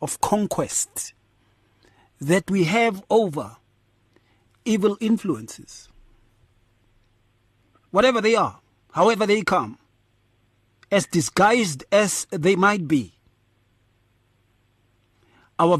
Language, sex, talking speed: English, male, 80 wpm